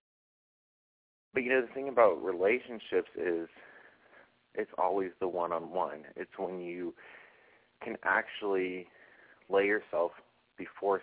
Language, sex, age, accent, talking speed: English, male, 30-49, American, 110 wpm